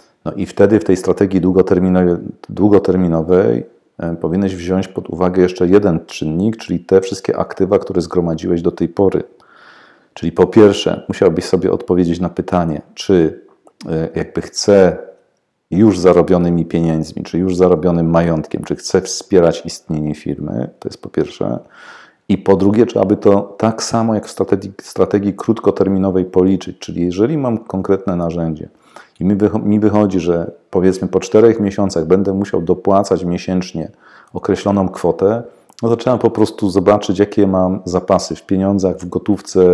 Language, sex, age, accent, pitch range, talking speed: Polish, male, 40-59, native, 90-100 Hz, 150 wpm